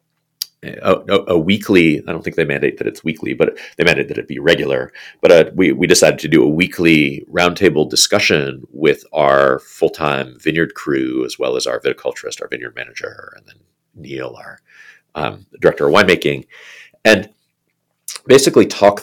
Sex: male